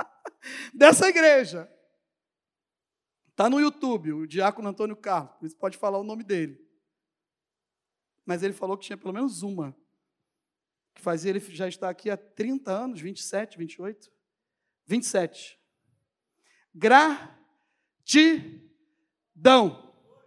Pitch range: 185-265 Hz